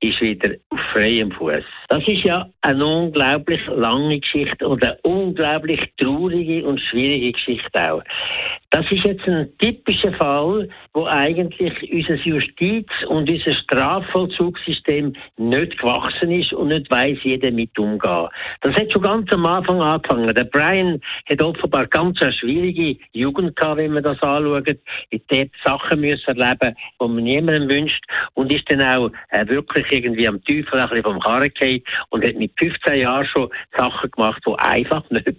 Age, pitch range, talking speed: 60-79, 130-180 Hz, 160 wpm